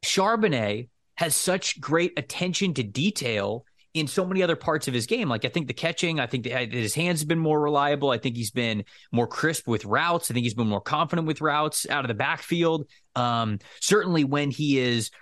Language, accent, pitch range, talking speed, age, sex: English, American, 115-160 Hz, 215 wpm, 20-39, male